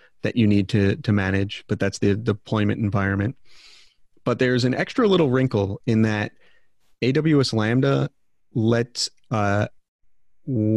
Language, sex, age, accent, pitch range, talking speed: English, male, 30-49, American, 100-120 Hz, 130 wpm